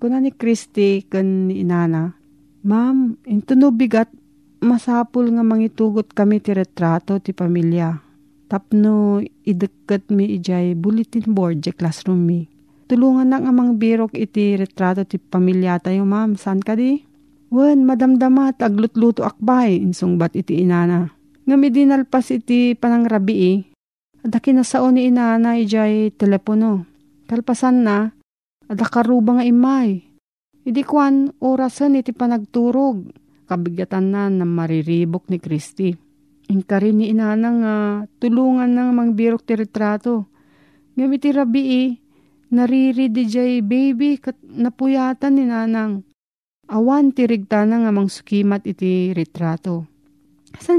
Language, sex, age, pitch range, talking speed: Filipino, female, 40-59, 185-250 Hz, 125 wpm